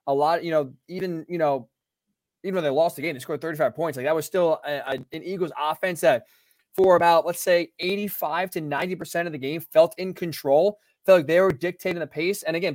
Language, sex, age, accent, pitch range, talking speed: English, male, 20-39, American, 150-180 Hz, 225 wpm